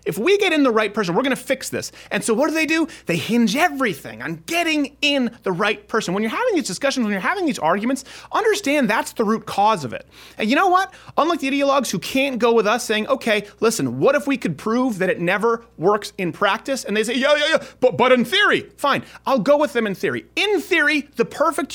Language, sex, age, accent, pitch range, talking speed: English, male, 30-49, American, 195-285 Hz, 250 wpm